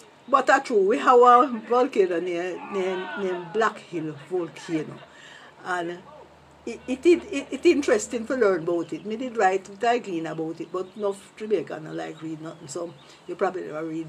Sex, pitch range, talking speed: female, 160-220 Hz, 175 wpm